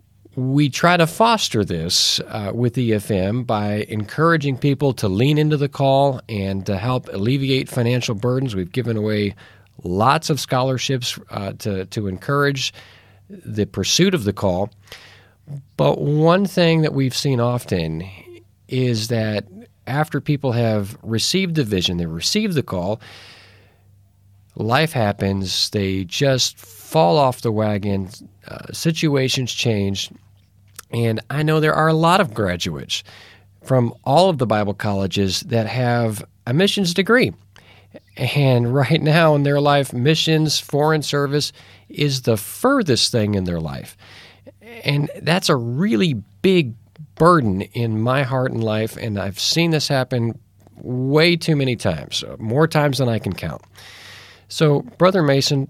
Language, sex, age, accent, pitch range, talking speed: English, male, 40-59, American, 100-145 Hz, 140 wpm